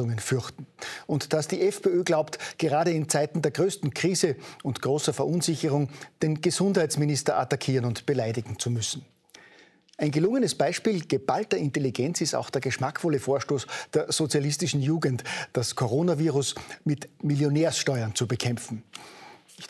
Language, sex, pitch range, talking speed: German, male, 125-155 Hz, 130 wpm